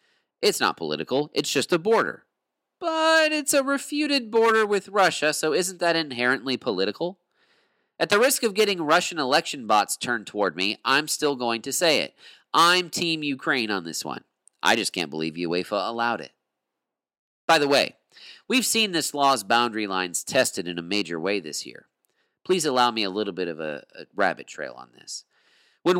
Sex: male